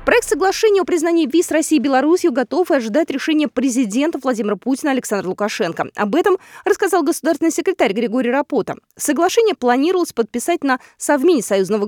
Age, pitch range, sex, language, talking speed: 20-39, 220-335 Hz, female, Russian, 145 wpm